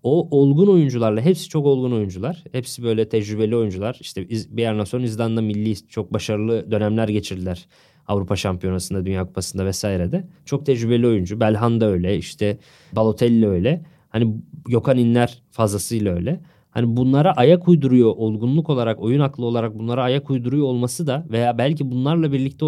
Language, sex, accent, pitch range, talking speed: Turkish, male, native, 110-150 Hz, 155 wpm